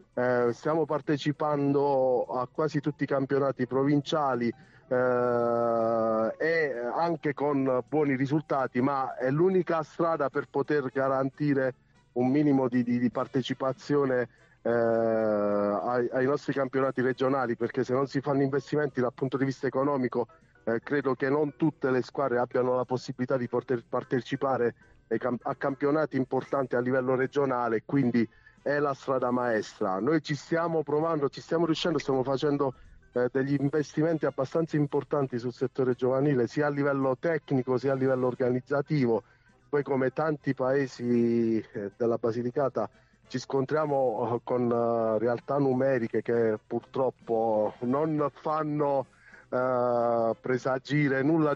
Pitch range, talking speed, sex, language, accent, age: 125-145 Hz, 135 wpm, male, Italian, native, 30-49